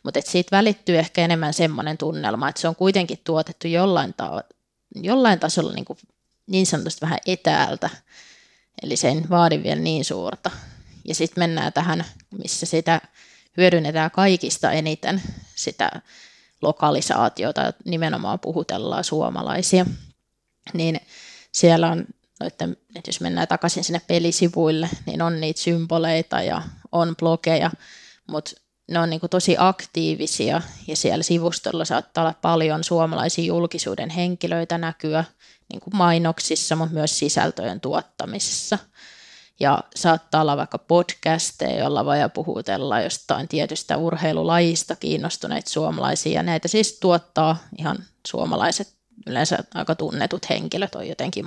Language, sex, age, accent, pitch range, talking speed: Finnish, female, 20-39, native, 160-180 Hz, 125 wpm